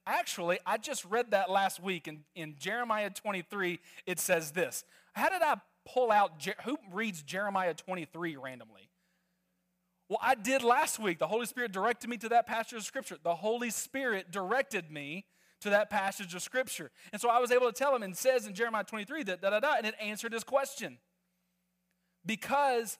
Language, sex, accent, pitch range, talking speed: English, male, American, 180-240 Hz, 195 wpm